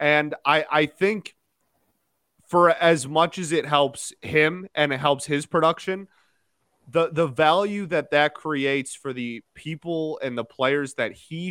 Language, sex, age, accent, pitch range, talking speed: English, male, 30-49, American, 140-175 Hz, 155 wpm